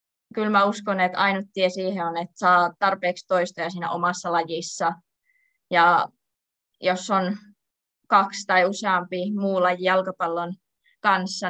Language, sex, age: Finnish, female, 20-39